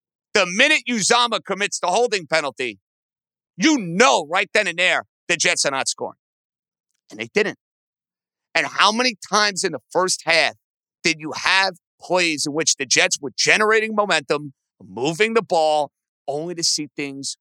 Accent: American